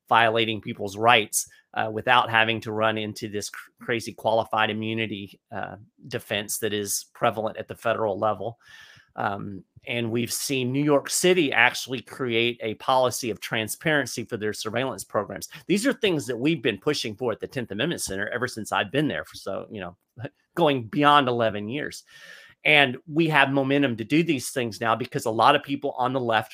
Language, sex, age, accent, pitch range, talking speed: English, male, 30-49, American, 110-135 Hz, 190 wpm